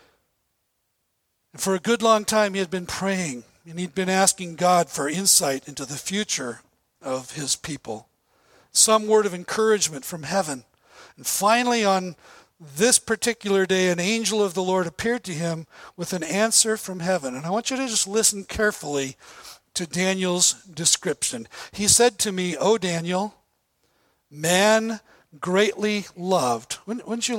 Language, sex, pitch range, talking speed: English, male, 155-210 Hz, 155 wpm